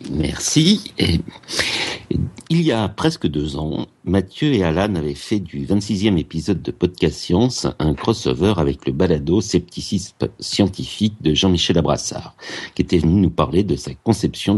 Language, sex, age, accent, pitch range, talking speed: French, male, 60-79, French, 75-100 Hz, 150 wpm